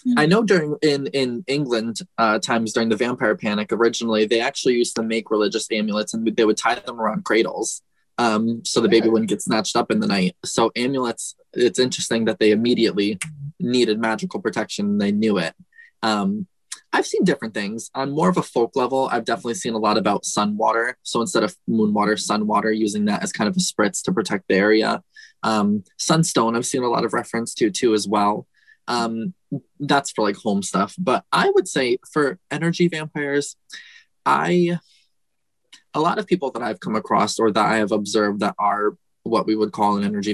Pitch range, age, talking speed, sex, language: 110-160 Hz, 20-39, 200 wpm, male, English